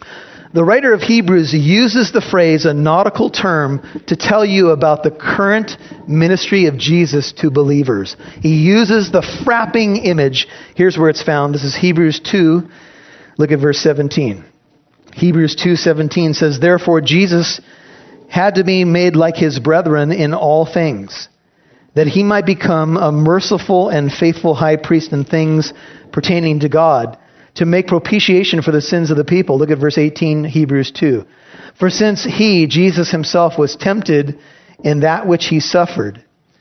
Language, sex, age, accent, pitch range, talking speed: English, male, 40-59, American, 155-190 Hz, 155 wpm